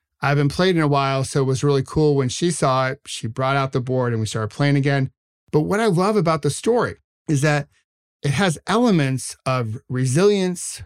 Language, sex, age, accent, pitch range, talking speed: English, male, 50-69, American, 130-160 Hz, 215 wpm